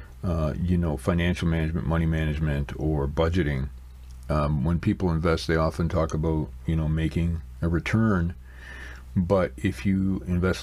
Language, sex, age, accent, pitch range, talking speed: English, male, 50-69, American, 75-95 Hz, 145 wpm